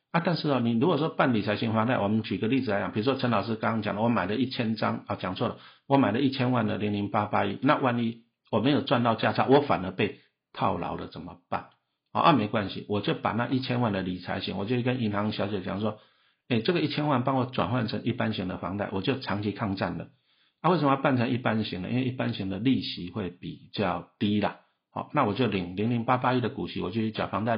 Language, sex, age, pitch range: Chinese, male, 50-69, 105-130 Hz